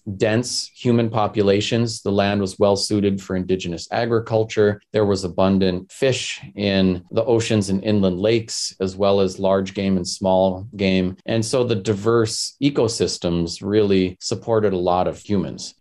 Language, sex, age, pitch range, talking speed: English, male, 30-49, 95-115 Hz, 150 wpm